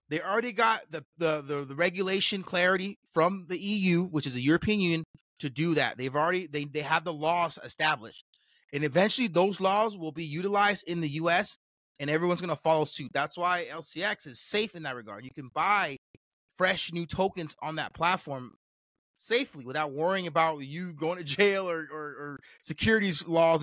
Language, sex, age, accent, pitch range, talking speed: English, male, 30-49, American, 145-180 Hz, 185 wpm